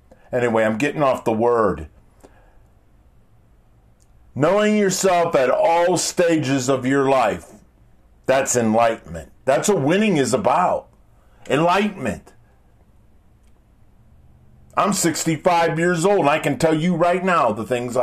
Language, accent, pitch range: English, American, 100-160 Hz